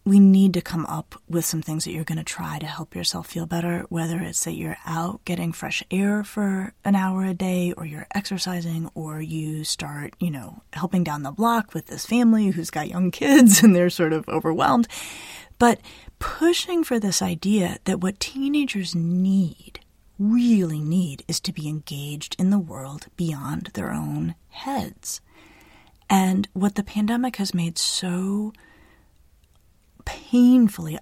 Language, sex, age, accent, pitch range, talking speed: English, female, 30-49, American, 165-195 Hz, 165 wpm